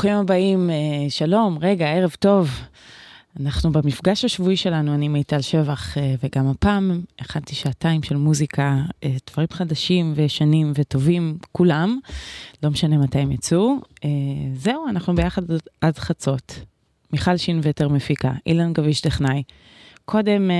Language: Hebrew